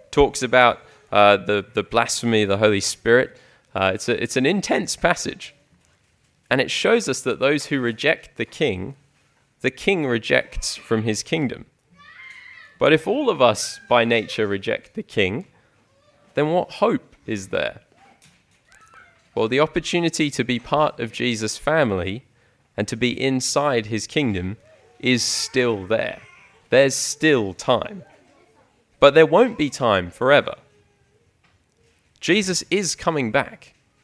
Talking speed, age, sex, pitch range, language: 140 wpm, 20-39, male, 105-145 Hz, English